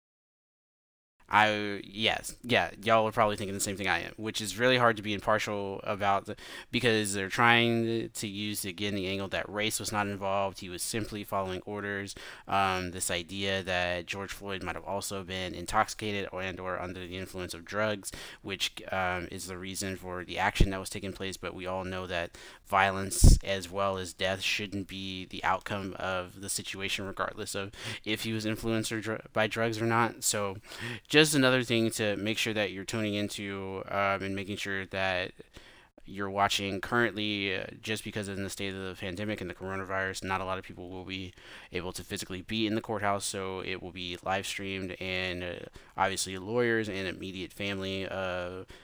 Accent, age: American, 20-39